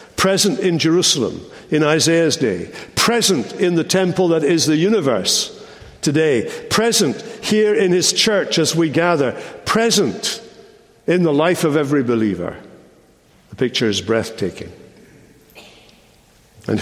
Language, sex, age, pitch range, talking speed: English, male, 60-79, 135-195 Hz, 125 wpm